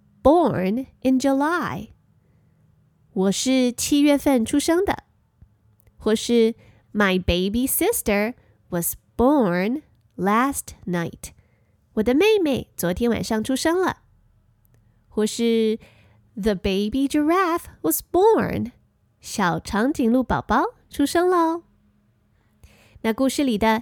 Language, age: Chinese, 20-39